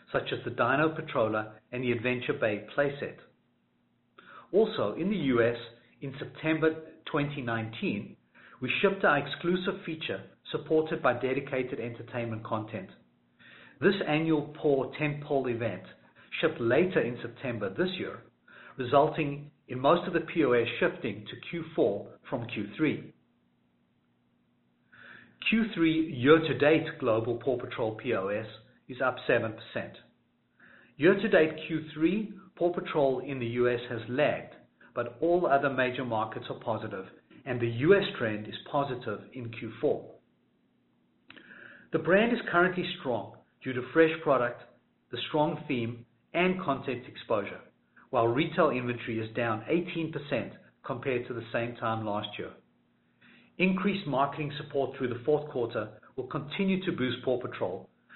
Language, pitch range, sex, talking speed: English, 120-160 Hz, male, 125 wpm